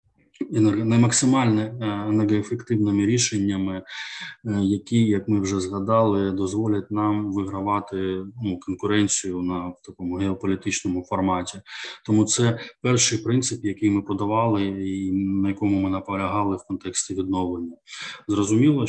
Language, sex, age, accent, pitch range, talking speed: Ukrainian, male, 20-39, native, 95-110 Hz, 110 wpm